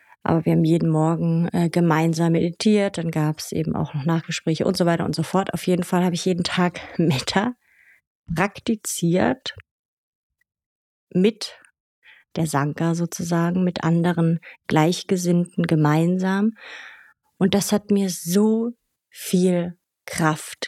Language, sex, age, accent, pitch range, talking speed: German, female, 30-49, German, 165-190 Hz, 130 wpm